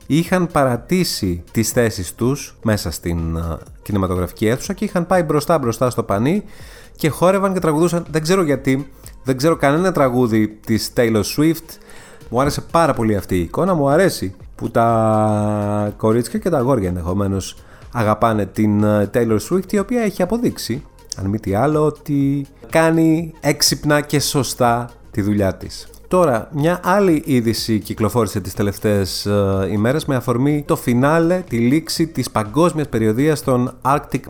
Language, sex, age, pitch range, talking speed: Greek, male, 30-49, 105-155 Hz, 150 wpm